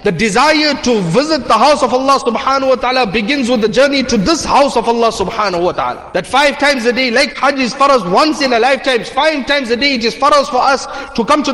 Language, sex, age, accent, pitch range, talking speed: English, male, 30-49, South African, 210-265 Hz, 260 wpm